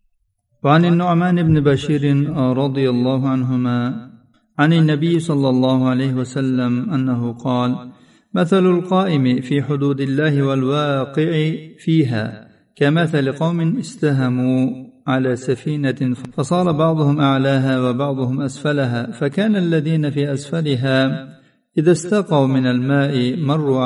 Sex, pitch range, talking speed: male, 125-155 Hz, 105 wpm